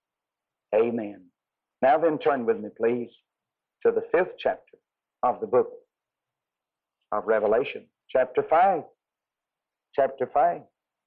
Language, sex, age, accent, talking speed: English, male, 60-79, American, 110 wpm